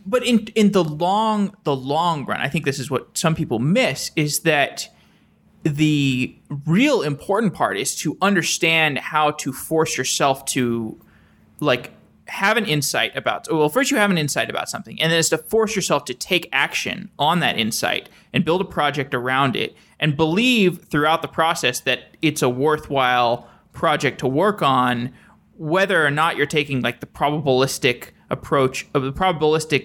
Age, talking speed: 20-39, 175 wpm